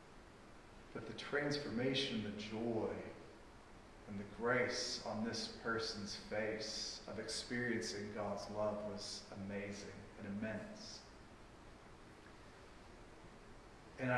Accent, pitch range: American, 105-125 Hz